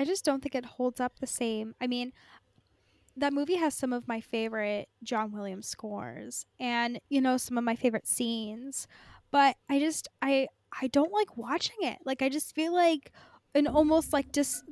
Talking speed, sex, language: 195 wpm, female, English